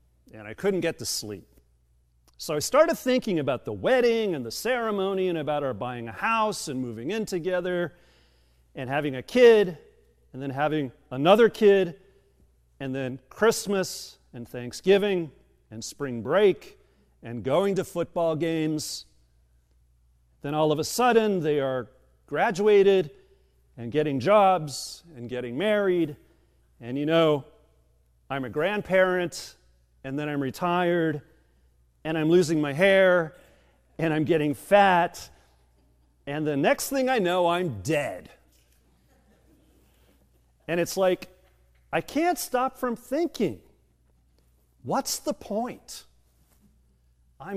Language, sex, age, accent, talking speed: English, male, 40-59, American, 125 wpm